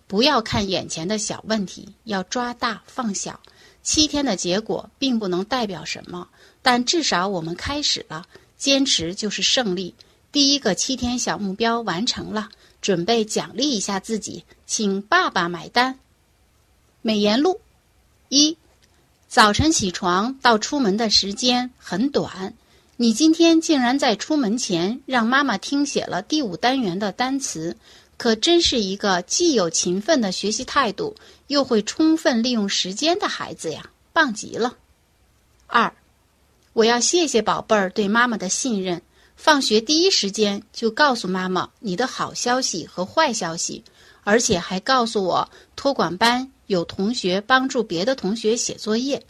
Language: Chinese